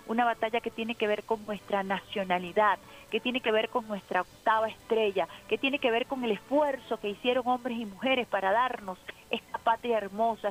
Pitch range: 200-235 Hz